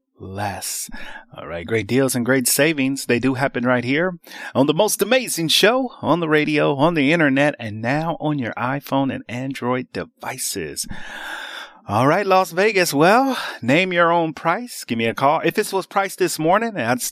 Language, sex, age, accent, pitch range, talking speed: English, male, 30-49, American, 130-200 Hz, 180 wpm